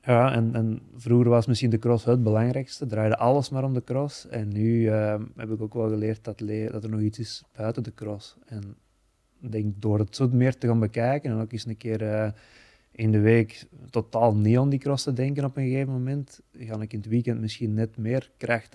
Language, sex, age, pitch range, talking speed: Dutch, male, 20-39, 110-120 Hz, 235 wpm